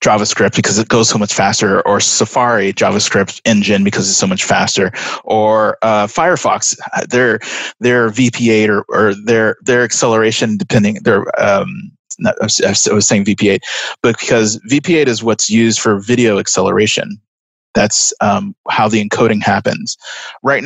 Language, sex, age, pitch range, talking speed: English, male, 20-39, 105-125 Hz, 145 wpm